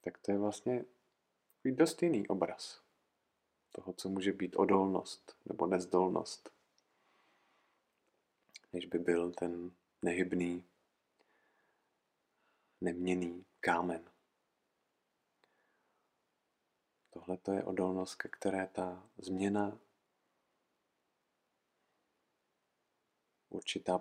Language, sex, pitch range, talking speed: Czech, male, 95-105 Hz, 75 wpm